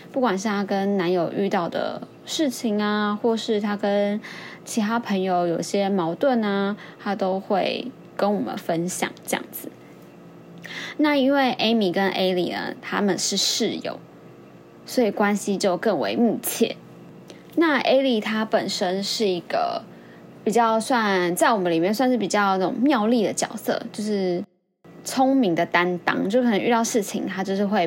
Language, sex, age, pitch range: Chinese, female, 20-39, 185-240 Hz